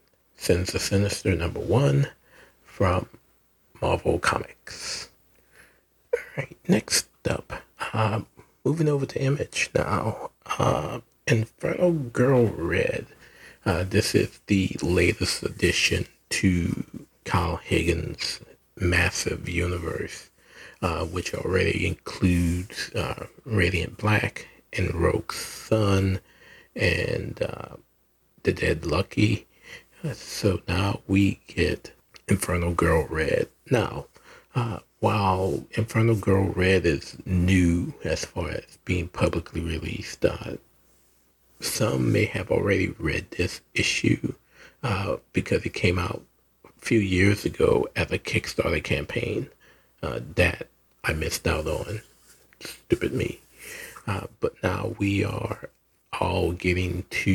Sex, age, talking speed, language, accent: male, 40-59, 110 wpm, English, American